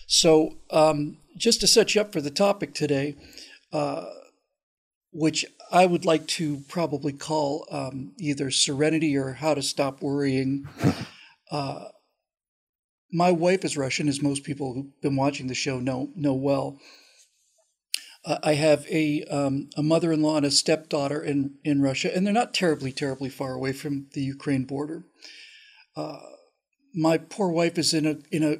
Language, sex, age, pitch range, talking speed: English, male, 50-69, 145-175 Hz, 160 wpm